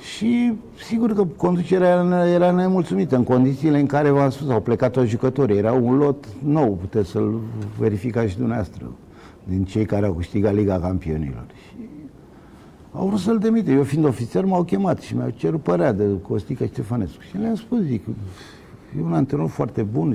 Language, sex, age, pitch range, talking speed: Romanian, male, 50-69, 100-150 Hz, 175 wpm